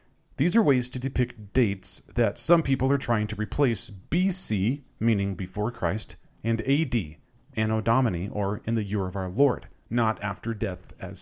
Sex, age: male, 40-59